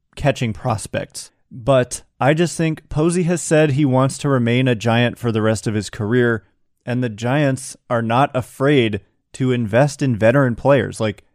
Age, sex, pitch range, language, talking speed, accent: 30-49, male, 110-140 Hz, English, 175 wpm, American